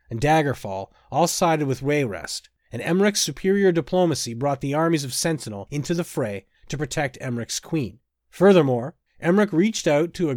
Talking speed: 160 wpm